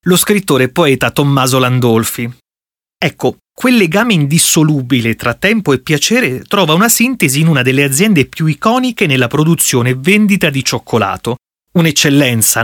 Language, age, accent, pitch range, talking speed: Italian, 30-49, native, 130-195 Hz, 145 wpm